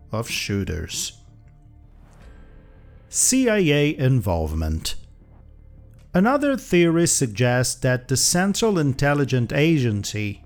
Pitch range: 110-155 Hz